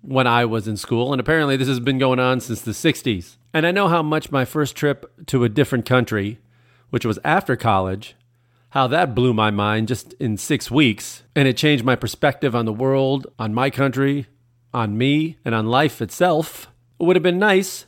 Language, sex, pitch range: English, male, 120-155 Hz